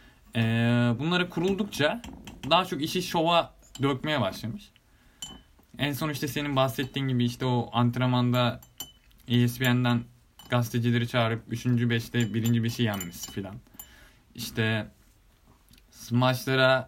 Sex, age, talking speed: male, 20-39, 105 wpm